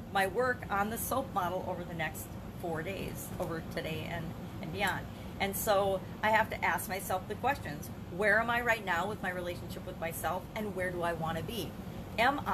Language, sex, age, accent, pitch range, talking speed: English, female, 40-59, American, 180-235 Hz, 205 wpm